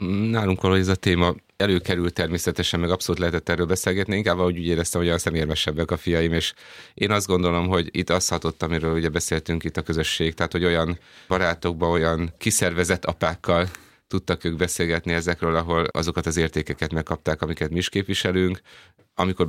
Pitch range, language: 80-90 Hz, Hungarian